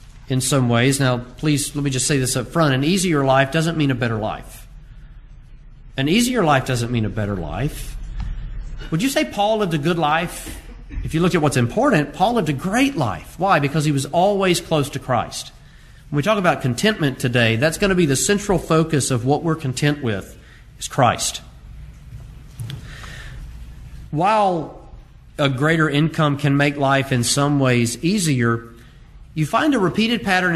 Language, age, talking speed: English, 40-59, 180 wpm